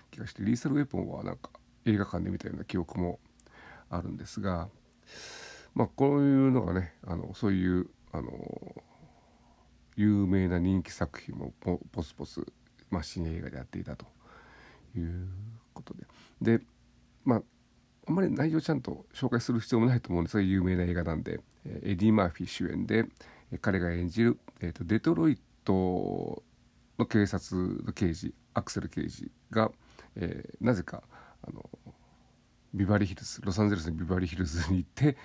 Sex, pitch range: male, 90-115 Hz